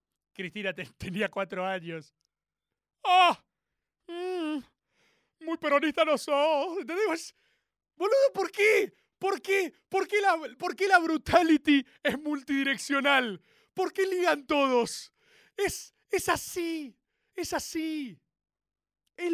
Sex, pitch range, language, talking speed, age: male, 205-330 Hz, Spanish, 115 wpm, 30-49